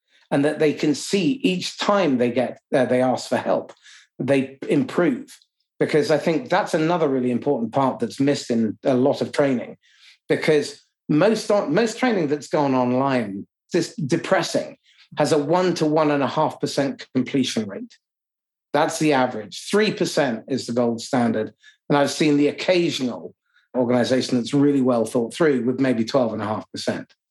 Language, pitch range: English, 125-165 Hz